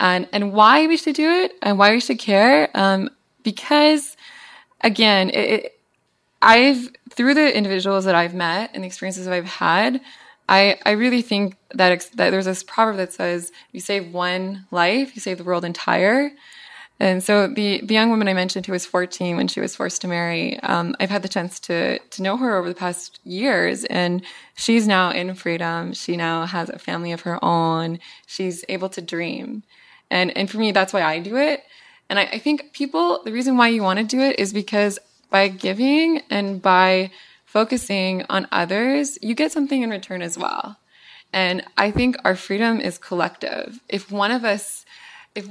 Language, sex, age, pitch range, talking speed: English, female, 20-39, 180-230 Hz, 195 wpm